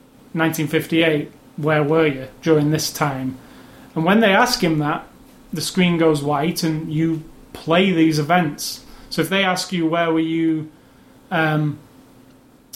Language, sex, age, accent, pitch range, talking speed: English, male, 30-49, British, 150-170 Hz, 145 wpm